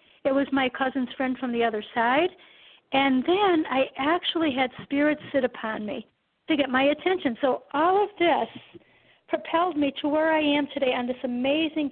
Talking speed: 180 wpm